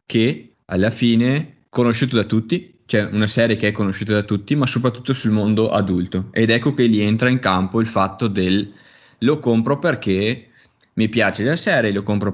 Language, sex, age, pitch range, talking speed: Italian, male, 20-39, 100-120 Hz, 185 wpm